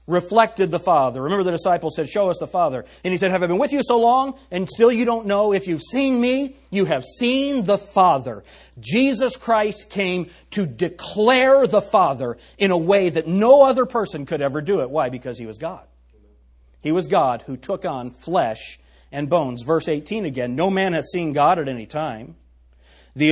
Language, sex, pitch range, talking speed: English, male, 130-210 Hz, 205 wpm